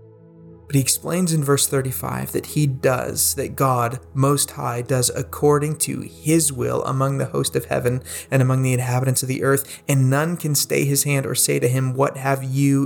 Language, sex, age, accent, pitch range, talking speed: English, male, 30-49, American, 120-140 Hz, 195 wpm